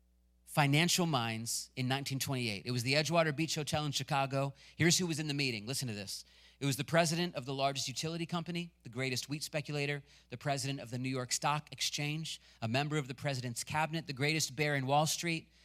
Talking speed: 205 wpm